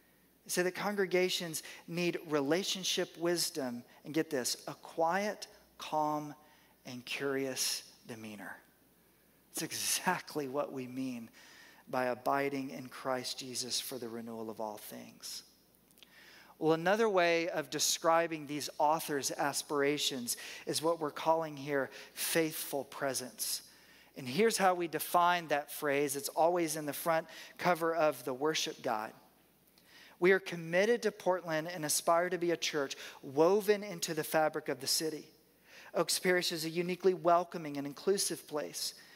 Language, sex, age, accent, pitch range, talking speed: English, male, 40-59, American, 145-180 Hz, 140 wpm